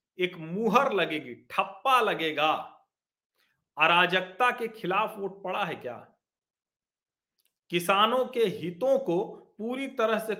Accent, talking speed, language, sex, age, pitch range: native, 110 wpm, Hindi, male, 40-59, 175-265 Hz